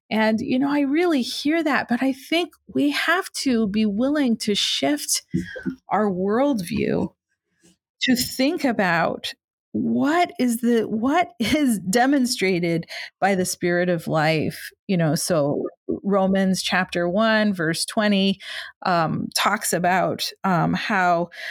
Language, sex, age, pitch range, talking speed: English, female, 40-59, 180-235 Hz, 130 wpm